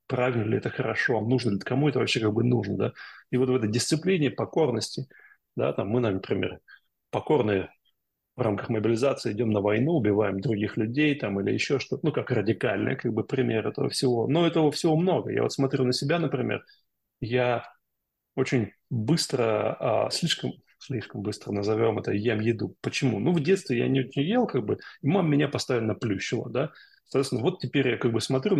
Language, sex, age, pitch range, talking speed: Russian, male, 30-49, 110-140 Hz, 185 wpm